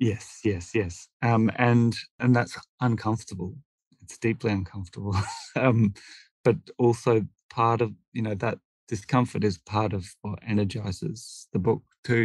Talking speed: 135 wpm